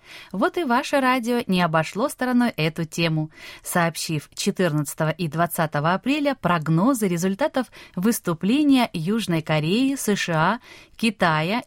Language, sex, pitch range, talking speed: Russian, female, 170-275 Hz, 110 wpm